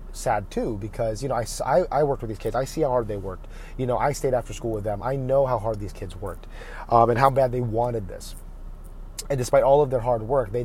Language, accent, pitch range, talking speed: English, American, 105-135 Hz, 265 wpm